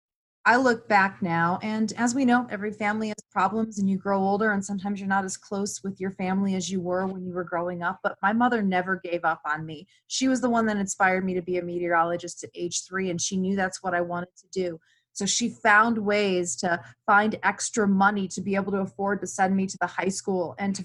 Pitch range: 180-205 Hz